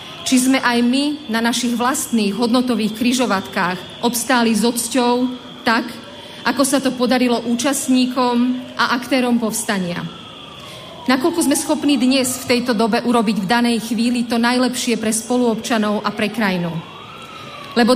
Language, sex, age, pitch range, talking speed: Slovak, female, 40-59, 225-255 Hz, 135 wpm